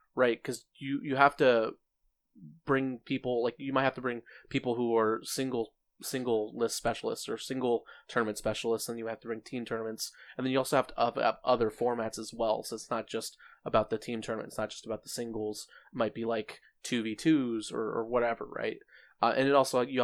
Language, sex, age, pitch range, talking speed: English, male, 20-39, 115-130 Hz, 220 wpm